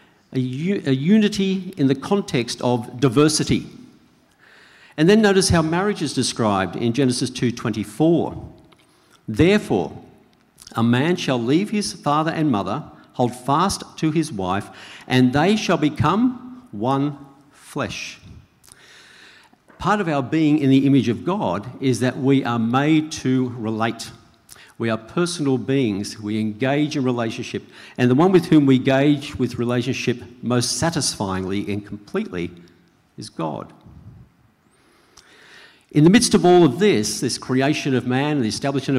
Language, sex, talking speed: English, male, 140 wpm